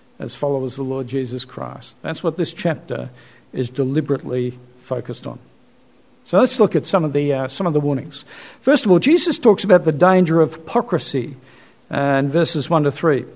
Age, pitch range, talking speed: 50-69, 145-190 Hz, 195 wpm